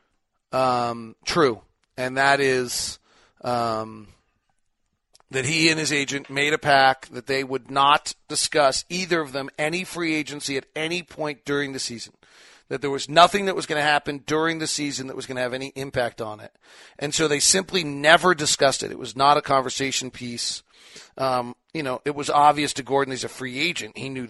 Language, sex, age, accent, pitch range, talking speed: English, male, 40-59, American, 125-155 Hz, 195 wpm